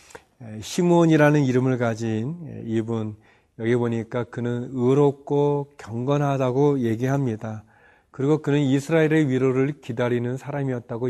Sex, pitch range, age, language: male, 115-145 Hz, 40-59, Korean